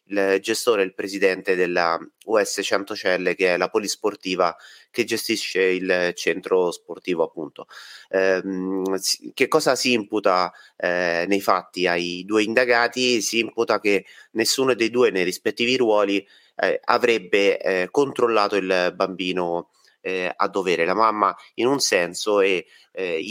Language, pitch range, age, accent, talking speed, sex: Italian, 90-115 Hz, 30-49, native, 135 wpm, male